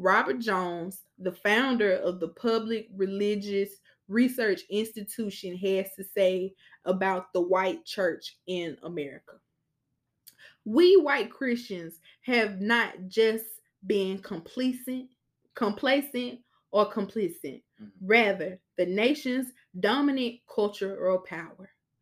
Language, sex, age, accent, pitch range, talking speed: English, female, 20-39, American, 180-220 Hz, 100 wpm